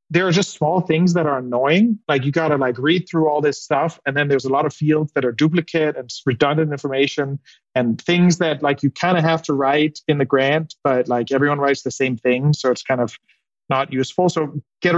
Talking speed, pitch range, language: 235 wpm, 135-165 Hz, English